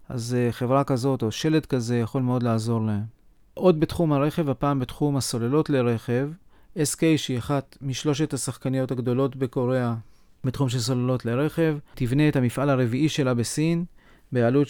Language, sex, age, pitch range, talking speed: Hebrew, male, 40-59, 120-140 Hz, 145 wpm